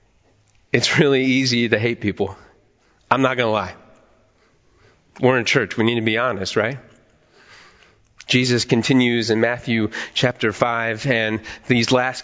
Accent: American